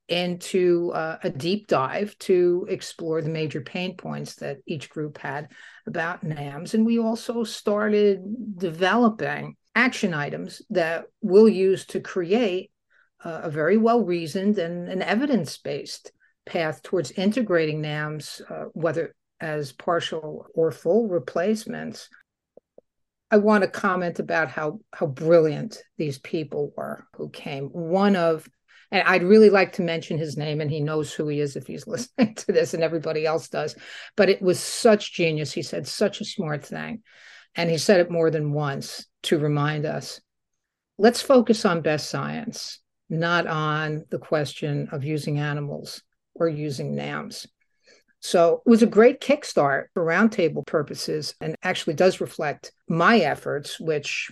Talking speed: 150 wpm